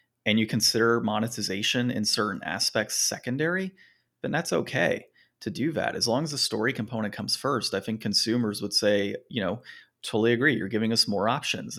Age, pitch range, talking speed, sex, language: 30-49, 105-120 Hz, 185 wpm, male, English